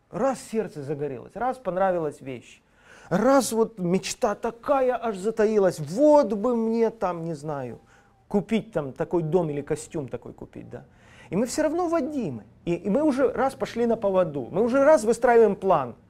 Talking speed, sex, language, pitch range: 165 wpm, male, Russian, 150-230 Hz